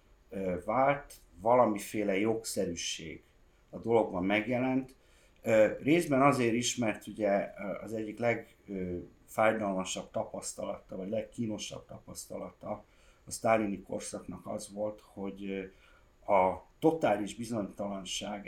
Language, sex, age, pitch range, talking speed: Hungarian, male, 50-69, 90-120 Hz, 90 wpm